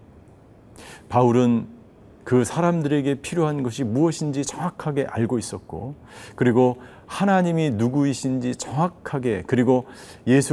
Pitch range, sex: 110-140 Hz, male